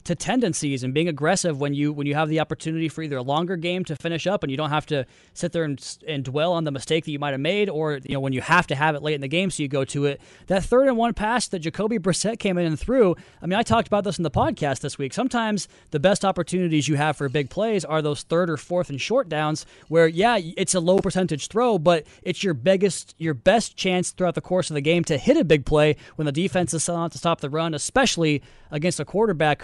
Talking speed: 275 wpm